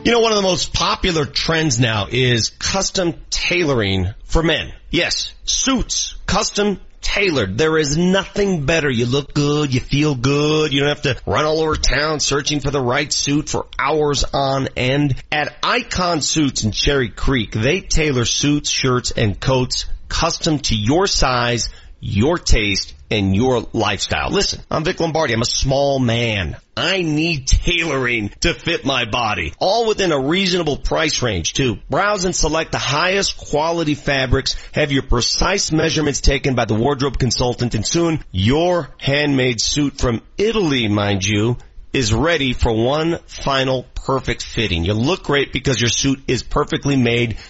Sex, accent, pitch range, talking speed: male, American, 120-165 Hz, 165 wpm